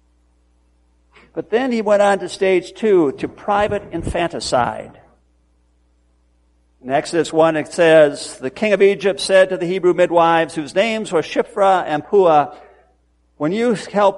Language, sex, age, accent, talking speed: English, male, 60-79, American, 145 wpm